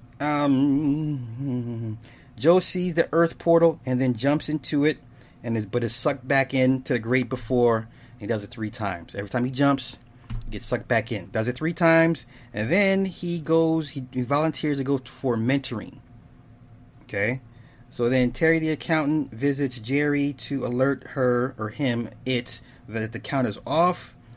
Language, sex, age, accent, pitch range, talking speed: English, male, 30-49, American, 120-145 Hz, 170 wpm